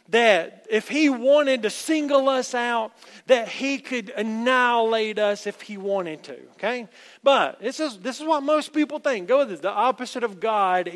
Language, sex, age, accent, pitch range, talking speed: English, male, 40-59, American, 185-255 Hz, 185 wpm